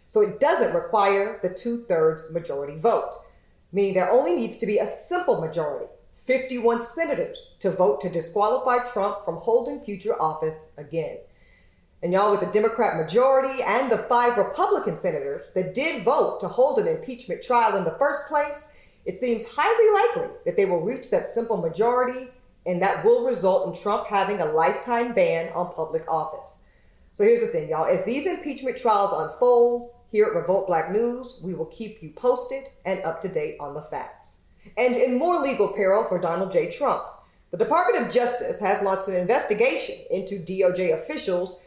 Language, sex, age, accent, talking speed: English, female, 40-59, American, 175 wpm